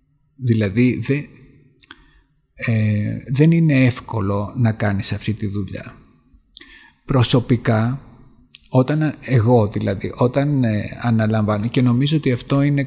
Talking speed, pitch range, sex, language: 105 wpm, 115-135 Hz, male, Greek